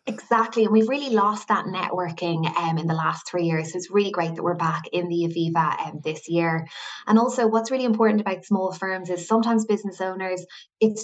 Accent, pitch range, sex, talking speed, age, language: Irish, 175-215 Hz, female, 210 wpm, 20-39, English